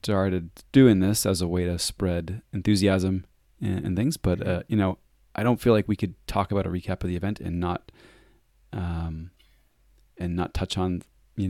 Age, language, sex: 30-49, English, male